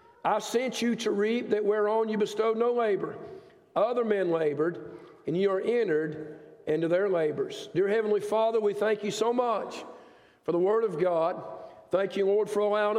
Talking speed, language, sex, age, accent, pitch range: 180 wpm, English, male, 50-69, American, 190-220 Hz